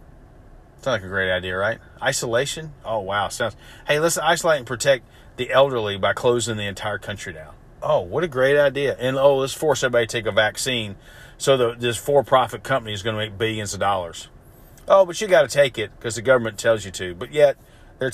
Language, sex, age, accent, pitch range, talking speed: English, male, 40-59, American, 110-140 Hz, 210 wpm